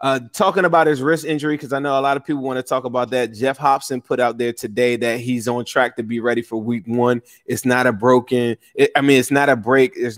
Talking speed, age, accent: 270 wpm, 20-39, American